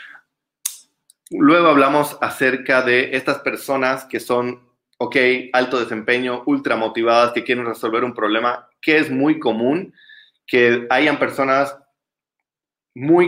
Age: 30-49